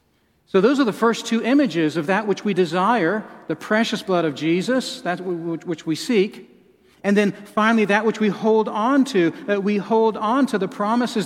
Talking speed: 195 wpm